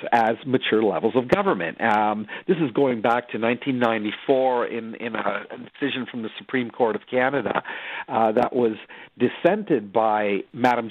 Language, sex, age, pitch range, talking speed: English, male, 50-69, 115-140 Hz, 160 wpm